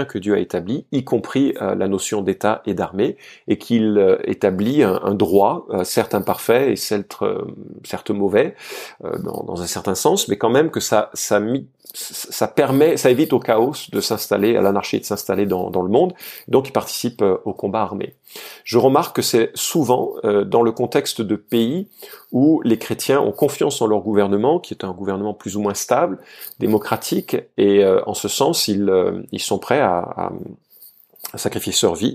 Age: 40-59